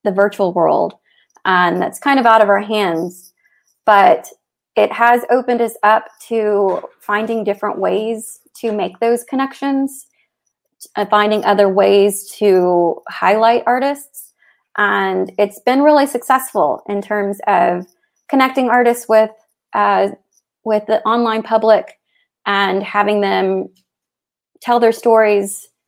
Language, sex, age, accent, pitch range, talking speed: English, female, 20-39, American, 195-225 Hz, 130 wpm